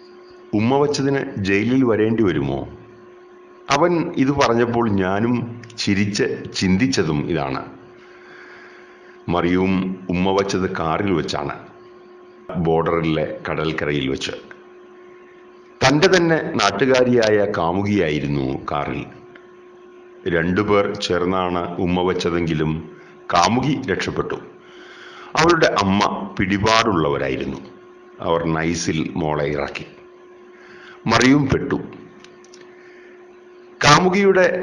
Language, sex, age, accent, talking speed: Malayalam, male, 50-69, native, 70 wpm